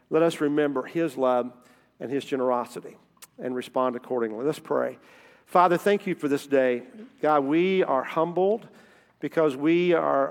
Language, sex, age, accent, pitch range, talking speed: English, male, 50-69, American, 125-160 Hz, 150 wpm